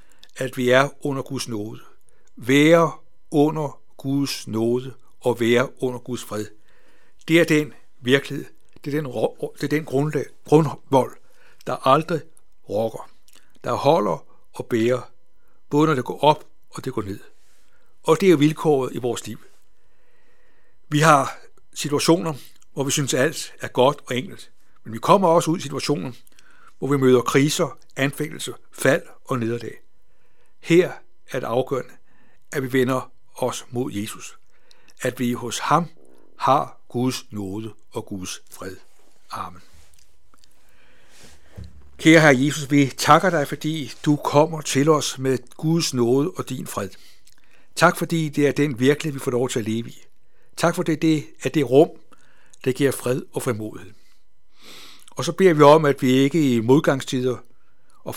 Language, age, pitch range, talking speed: Danish, 60-79, 125-155 Hz, 155 wpm